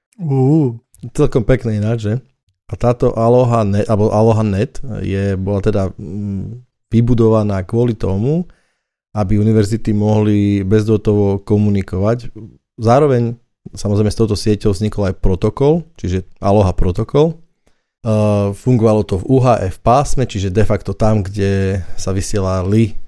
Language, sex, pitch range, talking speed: Slovak, male, 100-120 Hz, 120 wpm